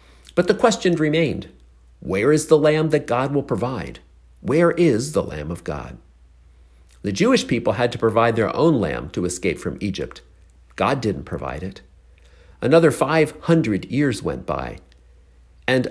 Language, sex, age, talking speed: English, male, 50-69, 155 wpm